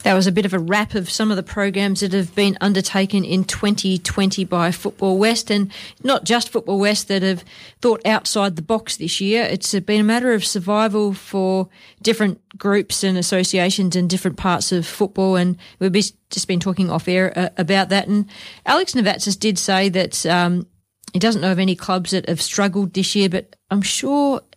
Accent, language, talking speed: Australian, English, 195 wpm